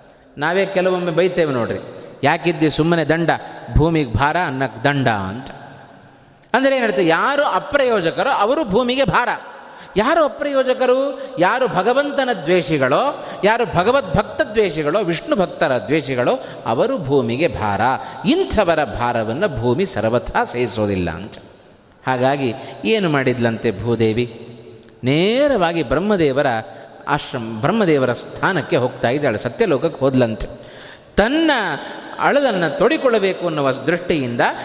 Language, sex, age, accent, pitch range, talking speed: Kannada, male, 30-49, native, 130-205 Hz, 100 wpm